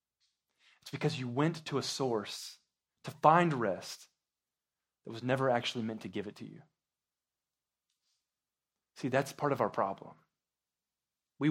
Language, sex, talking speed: English, male, 140 wpm